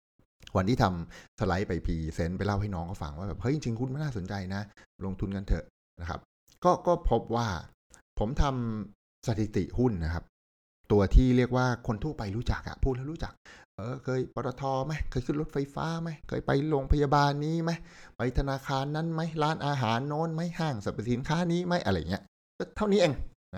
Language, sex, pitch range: Thai, male, 90-125 Hz